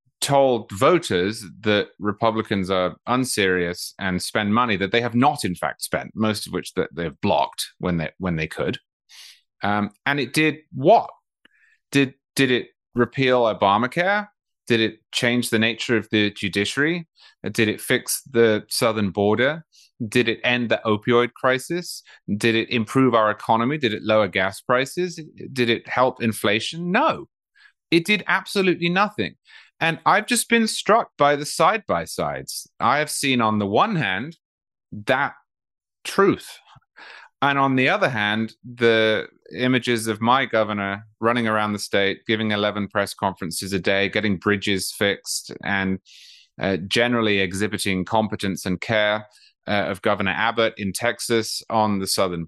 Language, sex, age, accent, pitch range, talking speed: English, male, 30-49, British, 105-135 Hz, 150 wpm